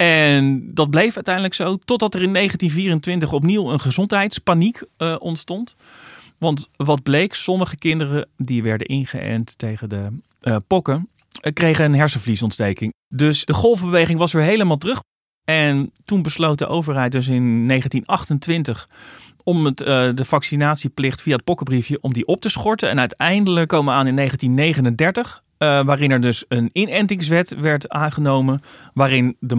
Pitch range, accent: 120-160 Hz, Dutch